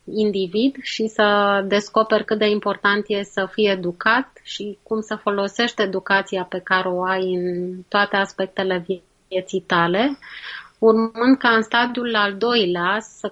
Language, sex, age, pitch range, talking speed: Romanian, female, 20-39, 190-215 Hz, 145 wpm